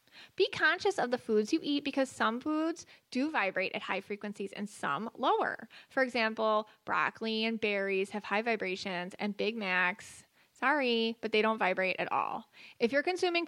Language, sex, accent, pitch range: English, female, American, 200-250 Hz